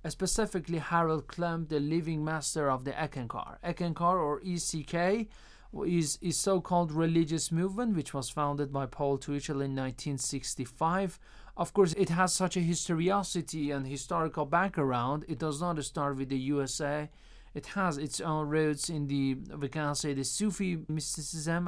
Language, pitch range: Persian, 145-180 Hz